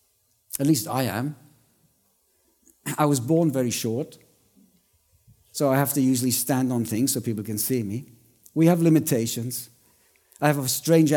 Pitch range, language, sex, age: 130-165 Hz, English, male, 50-69